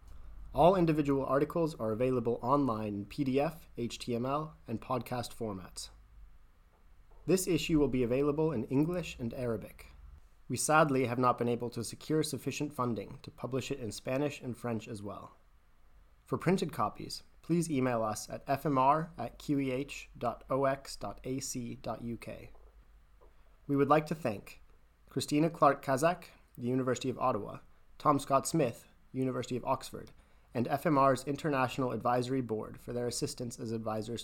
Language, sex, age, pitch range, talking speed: English, male, 30-49, 110-145 Hz, 130 wpm